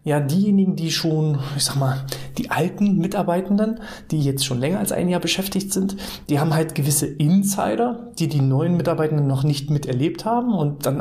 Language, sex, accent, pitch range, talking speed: German, male, German, 140-175 Hz, 185 wpm